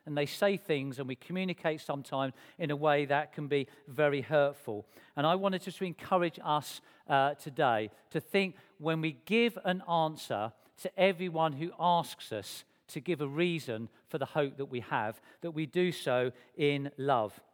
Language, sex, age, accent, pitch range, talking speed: English, male, 50-69, British, 140-170 Hz, 180 wpm